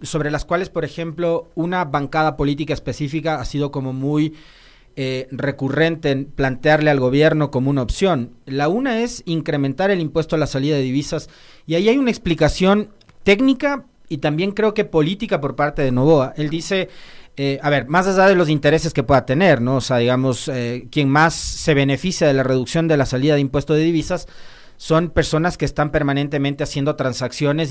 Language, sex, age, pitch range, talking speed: Spanish, male, 40-59, 135-165 Hz, 185 wpm